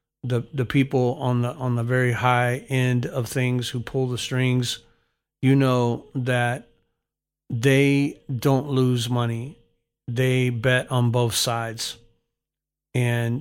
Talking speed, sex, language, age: 125 wpm, male, English, 40-59